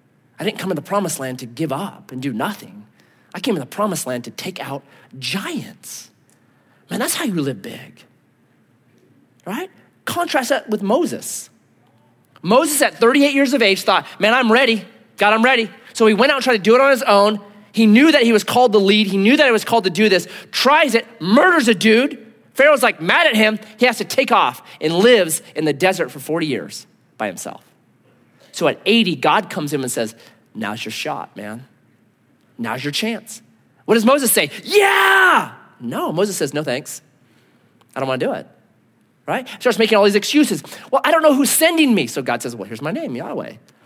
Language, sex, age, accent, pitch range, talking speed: English, male, 30-49, American, 185-255 Hz, 210 wpm